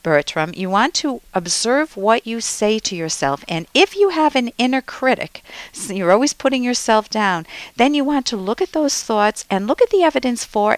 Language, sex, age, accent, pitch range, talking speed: English, female, 50-69, American, 170-240 Hz, 205 wpm